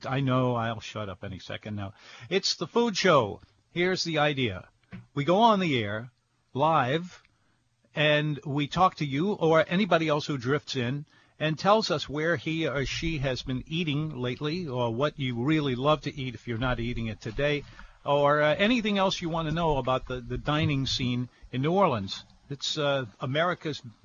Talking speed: 185 wpm